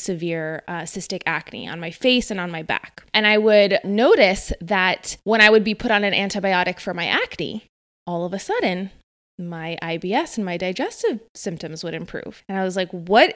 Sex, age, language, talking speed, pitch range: female, 20-39, English, 200 wpm, 180-215 Hz